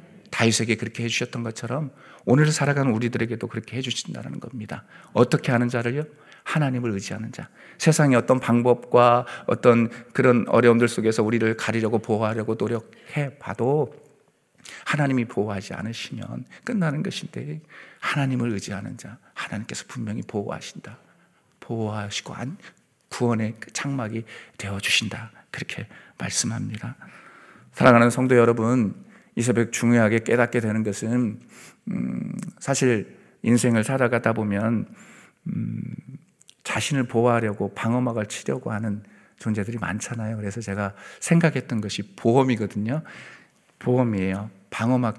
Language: Korean